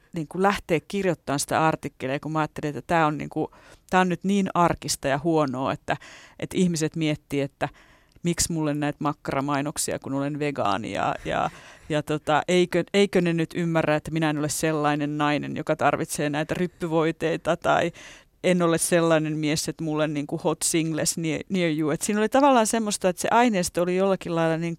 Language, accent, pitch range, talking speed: Finnish, native, 155-205 Hz, 180 wpm